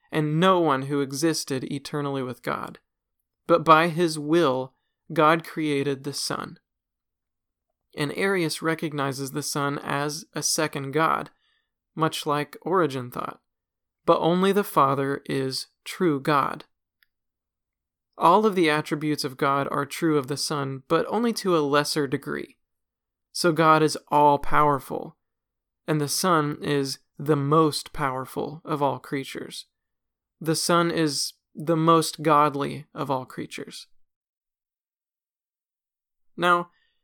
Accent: American